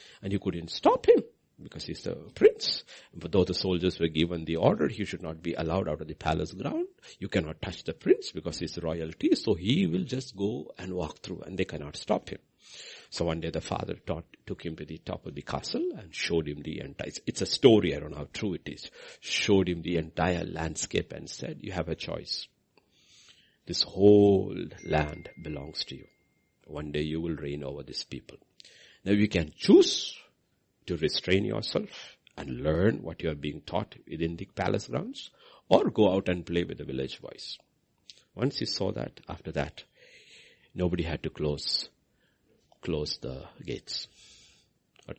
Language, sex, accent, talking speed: English, male, Indian, 190 wpm